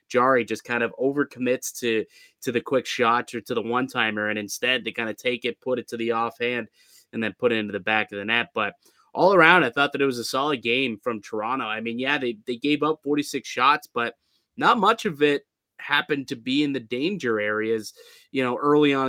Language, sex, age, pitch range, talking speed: English, male, 20-39, 115-135 Hz, 235 wpm